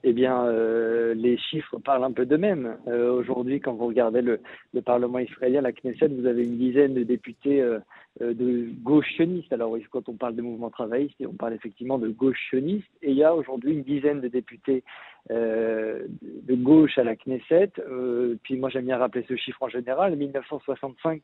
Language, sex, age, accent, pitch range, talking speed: French, male, 50-69, French, 120-145 Hz, 200 wpm